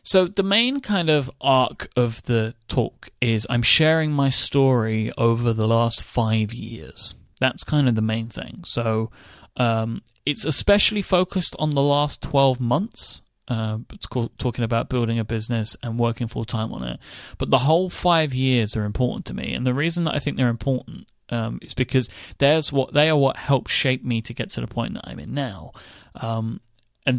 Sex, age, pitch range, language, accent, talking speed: male, 30-49, 115-145 Hz, English, British, 195 wpm